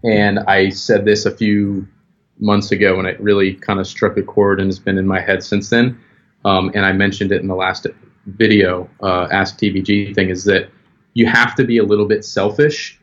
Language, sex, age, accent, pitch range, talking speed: English, male, 30-49, American, 95-110 Hz, 215 wpm